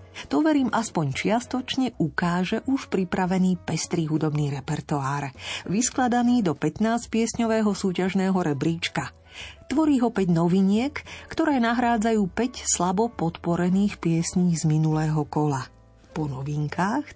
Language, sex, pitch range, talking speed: Slovak, female, 155-210 Hz, 110 wpm